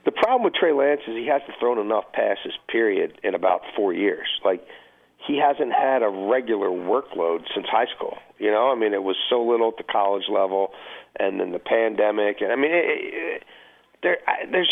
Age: 50-69